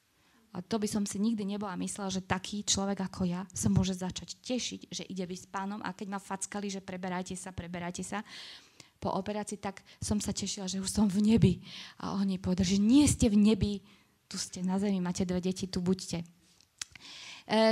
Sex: female